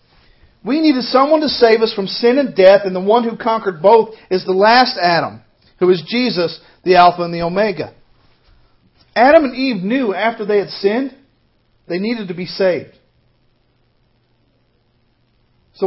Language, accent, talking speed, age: English, American, 160 wpm, 50-69